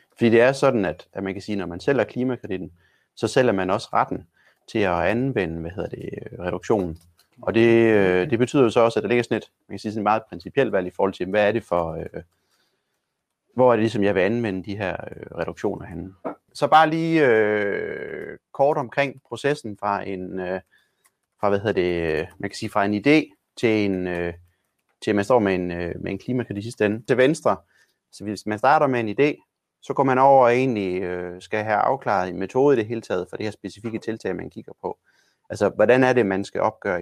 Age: 30-49